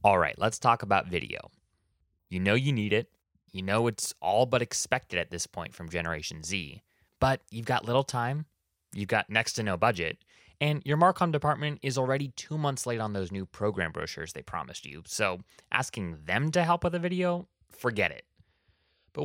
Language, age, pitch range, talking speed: English, 20-39, 95-135 Hz, 195 wpm